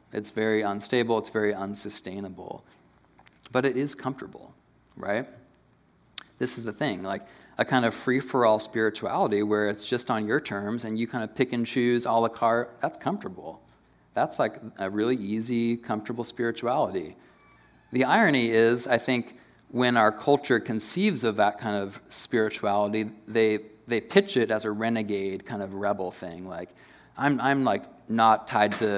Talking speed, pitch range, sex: 160 wpm, 105-120 Hz, male